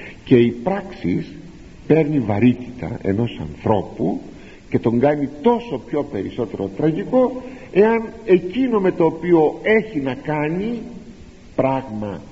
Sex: male